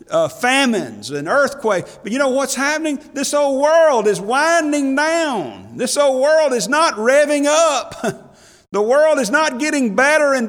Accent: American